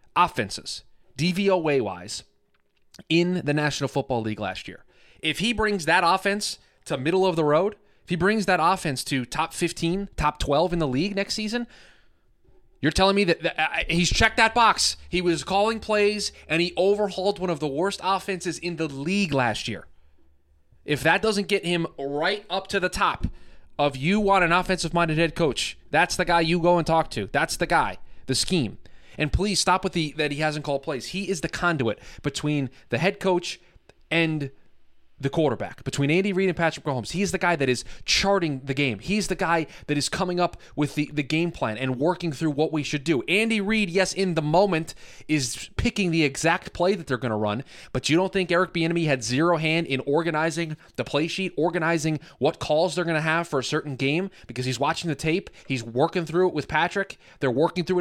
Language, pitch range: English, 135-185 Hz